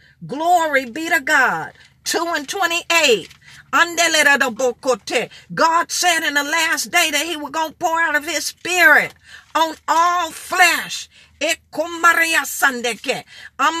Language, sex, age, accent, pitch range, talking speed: English, female, 50-69, American, 285-360 Hz, 115 wpm